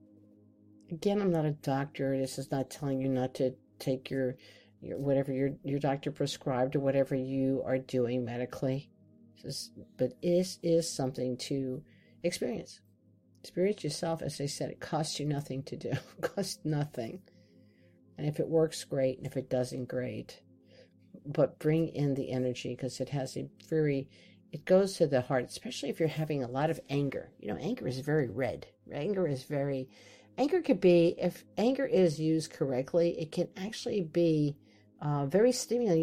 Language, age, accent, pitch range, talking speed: English, 50-69, American, 130-165 Hz, 175 wpm